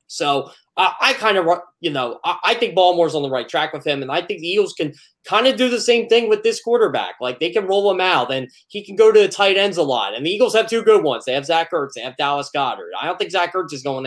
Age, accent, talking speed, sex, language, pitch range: 20-39, American, 300 wpm, male, English, 155-220 Hz